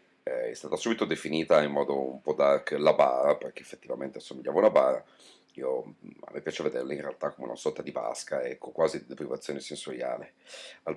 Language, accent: Italian, native